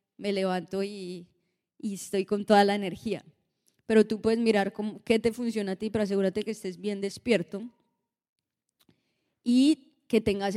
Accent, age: Colombian, 20-39